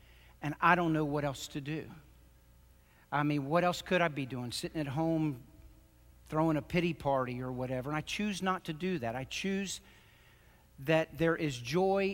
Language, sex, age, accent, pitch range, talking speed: English, male, 50-69, American, 130-180 Hz, 190 wpm